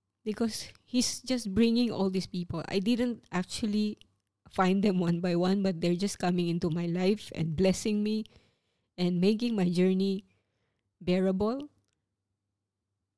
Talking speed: 135 wpm